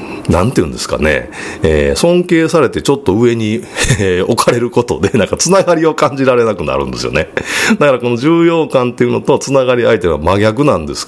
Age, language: 40-59, Japanese